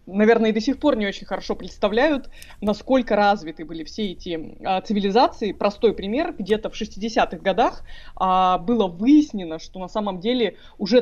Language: Russian